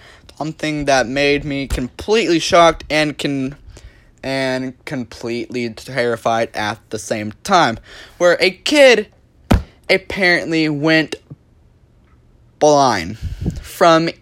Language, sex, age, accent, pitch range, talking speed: English, male, 20-39, American, 120-175 Hz, 95 wpm